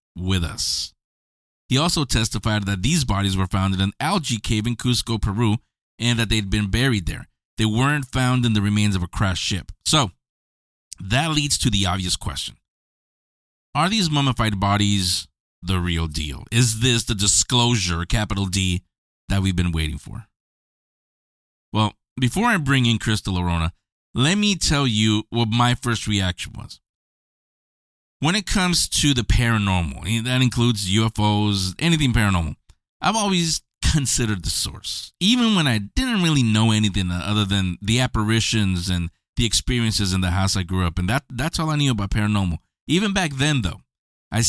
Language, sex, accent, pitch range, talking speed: English, male, American, 90-125 Hz, 165 wpm